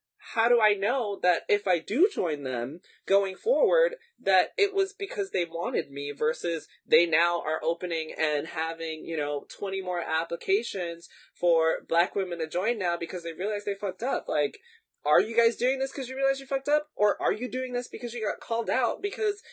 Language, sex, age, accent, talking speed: English, male, 20-39, American, 205 wpm